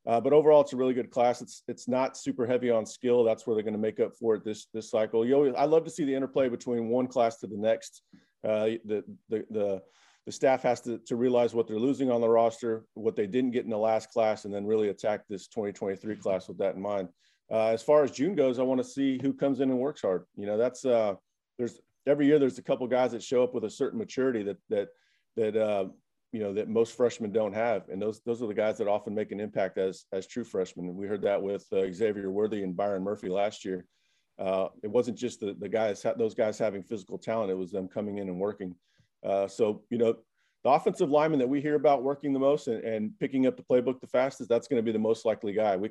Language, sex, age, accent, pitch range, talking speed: English, male, 40-59, American, 105-125 Hz, 260 wpm